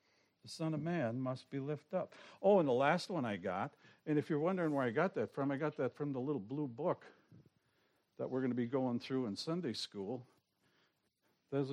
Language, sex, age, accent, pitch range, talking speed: English, male, 60-79, American, 120-160 Hz, 220 wpm